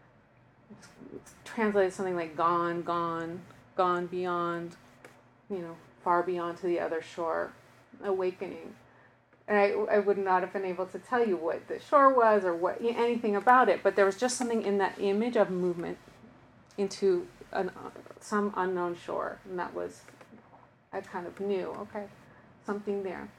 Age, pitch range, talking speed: 30-49, 175-210 Hz, 155 wpm